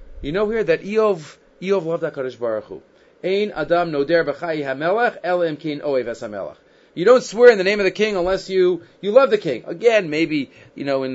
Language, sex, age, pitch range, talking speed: English, male, 30-49, 155-215 Hz, 190 wpm